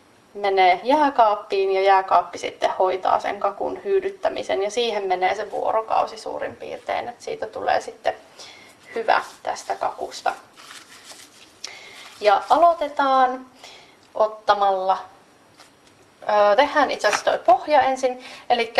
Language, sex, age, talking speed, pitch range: Finnish, female, 30-49, 105 wpm, 195-260 Hz